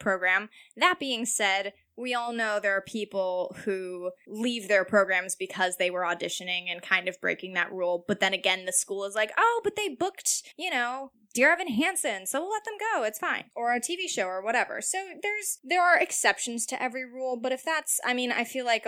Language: English